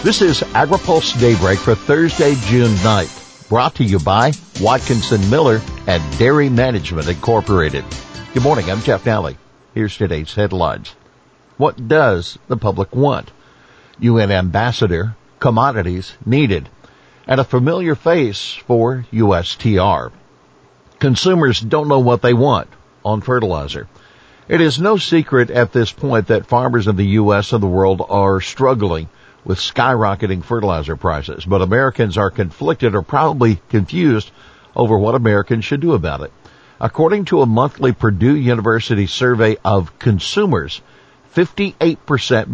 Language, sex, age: English, male, 60-79